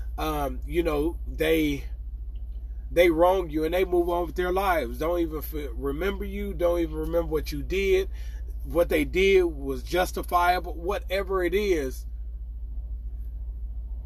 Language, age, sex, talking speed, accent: English, 30-49, male, 135 wpm, American